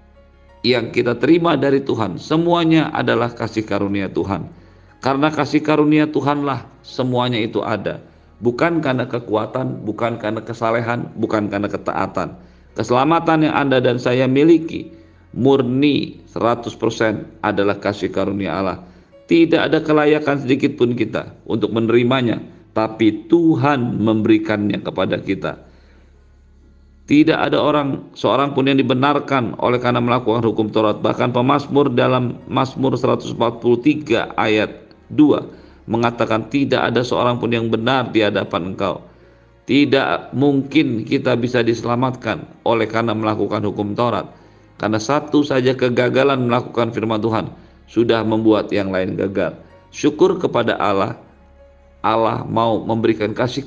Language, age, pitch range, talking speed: Indonesian, 50-69, 105-135 Hz, 120 wpm